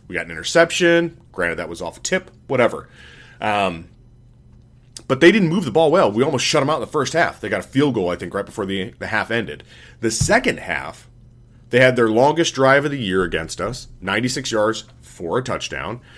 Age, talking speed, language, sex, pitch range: 30-49, 215 wpm, English, male, 110-145 Hz